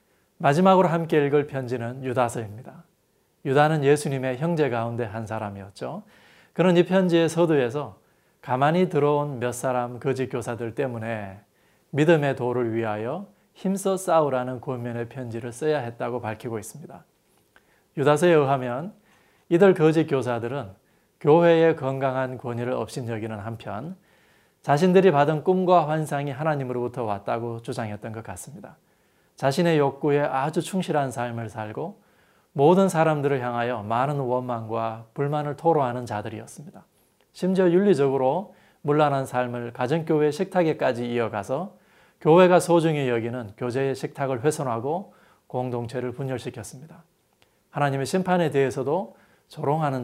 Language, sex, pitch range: Korean, male, 120-160 Hz